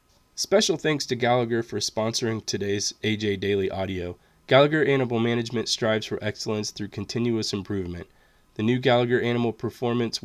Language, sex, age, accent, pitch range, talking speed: English, male, 20-39, American, 100-120 Hz, 140 wpm